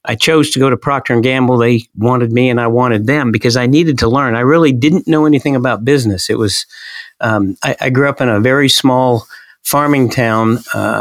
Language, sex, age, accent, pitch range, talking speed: English, male, 50-69, American, 115-135 Hz, 220 wpm